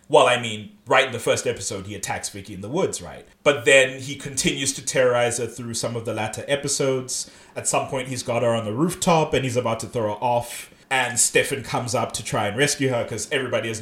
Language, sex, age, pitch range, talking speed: English, male, 20-39, 110-135 Hz, 245 wpm